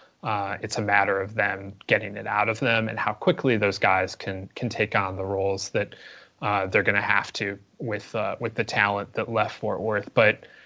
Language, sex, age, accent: English, male, 30-49, American